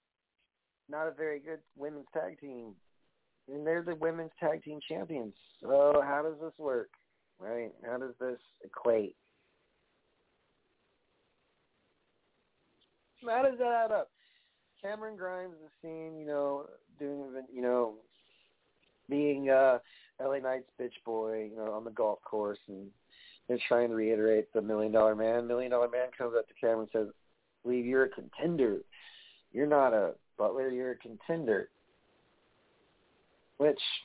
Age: 40-59